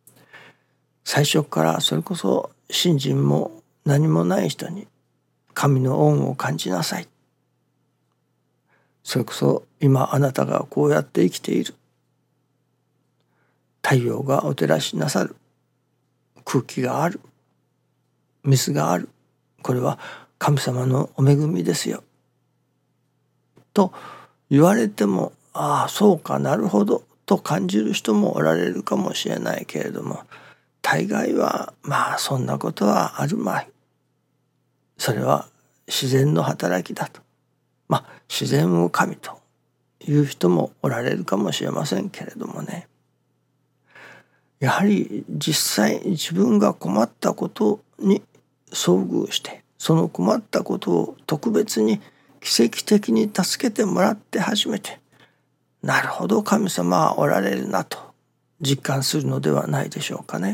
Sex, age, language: male, 60-79, Japanese